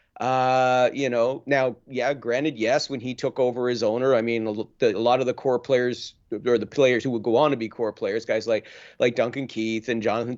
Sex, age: male, 40-59